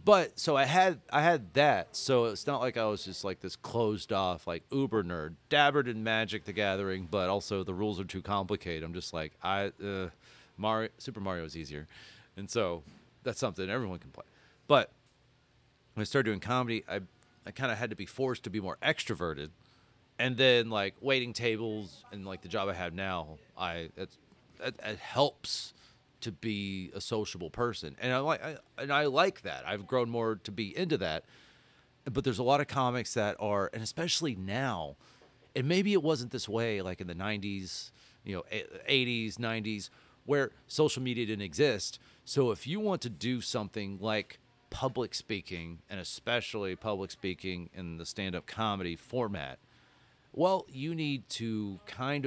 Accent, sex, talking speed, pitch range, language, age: American, male, 180 wpm, 95-125 Hz, English, 30-49